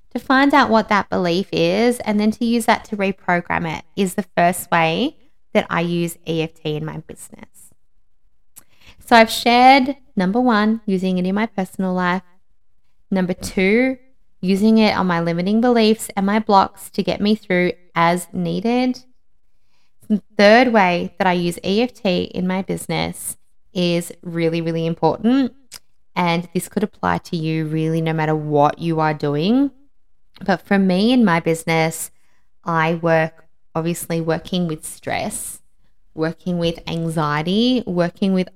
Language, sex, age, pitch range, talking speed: English, female, 20-39, 165-215 Hz, 150 wpm